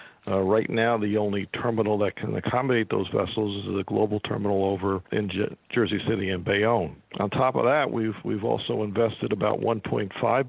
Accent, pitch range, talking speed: American, 105-115 Hz, 185 wpm